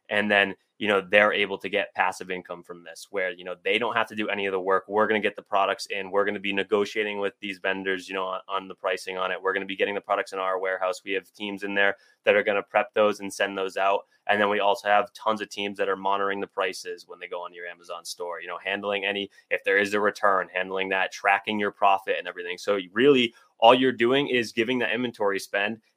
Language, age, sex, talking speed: English, 20-39, male, 275 wpm